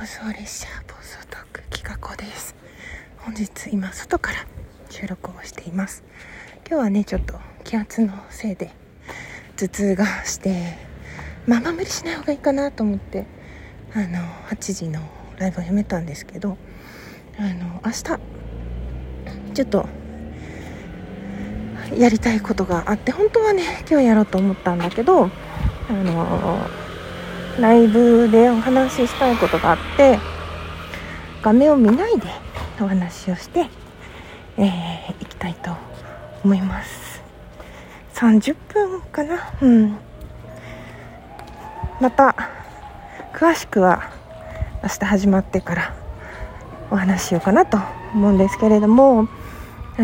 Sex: female